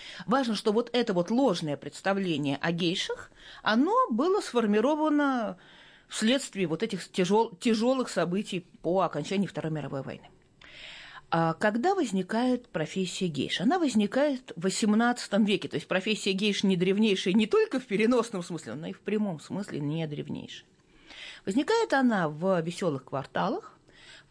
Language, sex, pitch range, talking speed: Russian, female, 165-230 Hz, 140 wpm